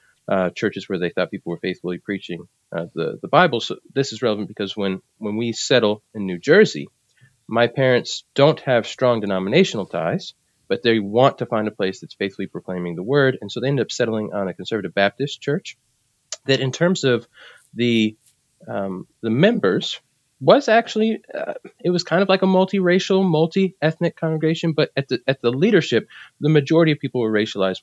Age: 30-49